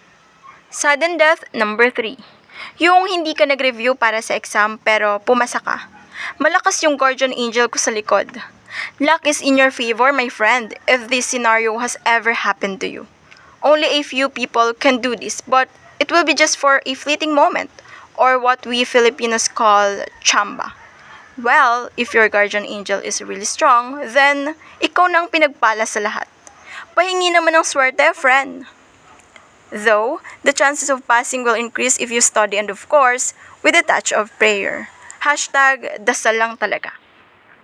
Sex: female